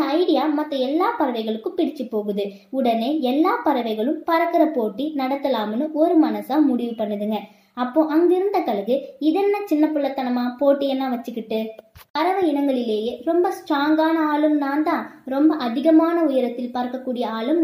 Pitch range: 245-310 Hz